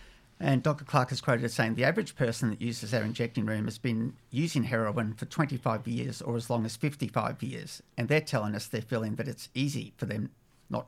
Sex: male